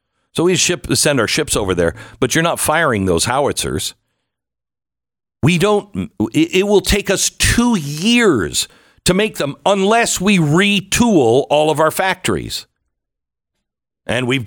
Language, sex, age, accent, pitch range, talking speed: English, male, 60-79, American, 120-195 Hz, 140 wpm